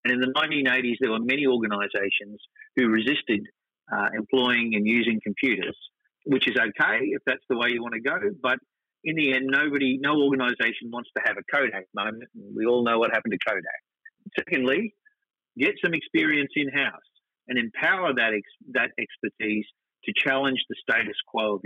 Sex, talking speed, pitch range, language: male, 170 wpm, 120-175 Hz, English